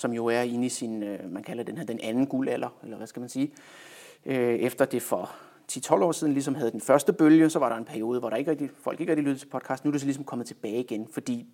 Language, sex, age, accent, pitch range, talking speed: Danish, male, 30-49, native, 120-145 Hz, 275 wpm